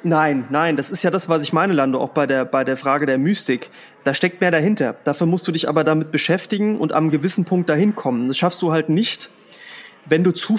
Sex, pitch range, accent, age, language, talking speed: male, 145-180 Hz, German, 30-49, German, 245 wpm